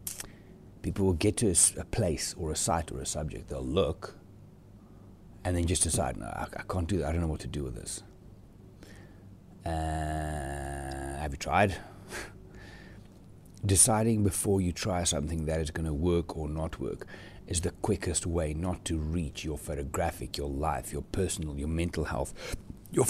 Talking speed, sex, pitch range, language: 175 wpm, male, 80-100 Hz, English